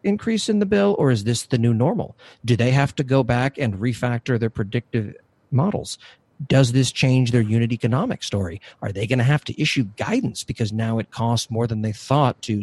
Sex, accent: male, American